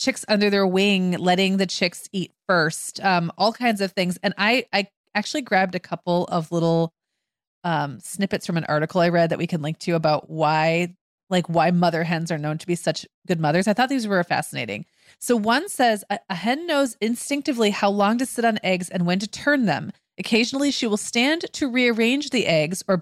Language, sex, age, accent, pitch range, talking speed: English, female, 30-49, American, 175-230 Hz, 210 wpm